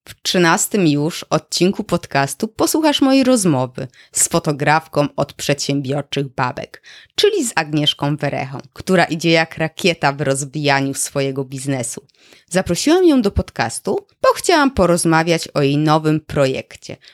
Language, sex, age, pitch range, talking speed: Polish, female, 20-39, 145-205 Hz, 125 wpm